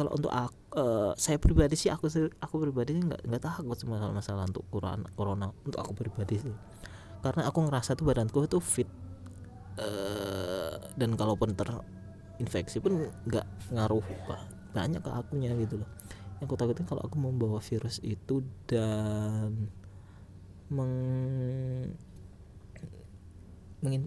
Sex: male